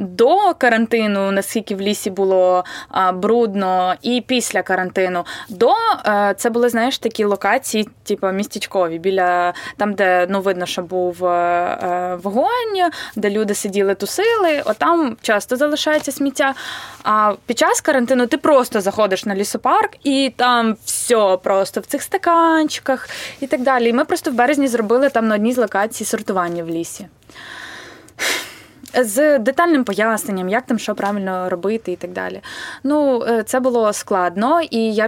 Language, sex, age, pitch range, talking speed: Ukrainian, female, 20-39, 200-265 Hz, 145 wpm